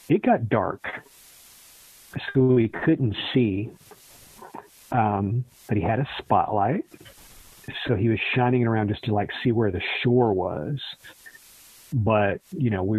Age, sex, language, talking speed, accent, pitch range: 40-59, male, English, 145 wpm, American, 100-120 Hz